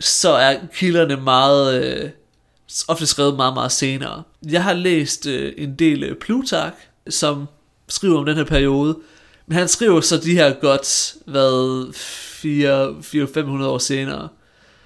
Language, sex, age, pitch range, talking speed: Danish, male, 30-49, 140-170 Hz, 135 wpm